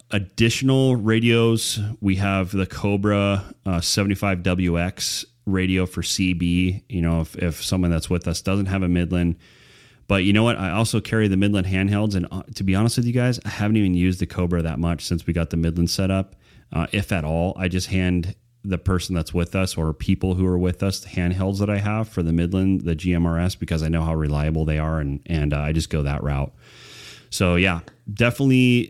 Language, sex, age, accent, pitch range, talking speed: English, male, 30-49, American, 85-105 Hz, 215 wpm